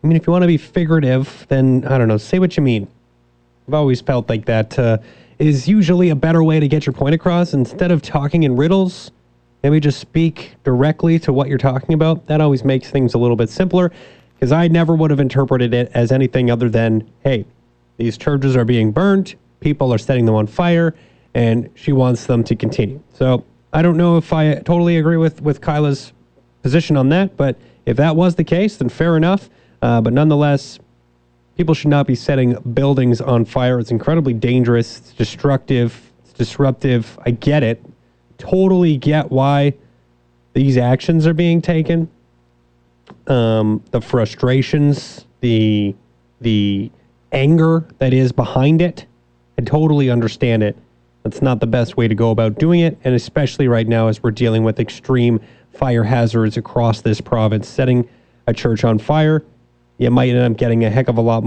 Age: 30-49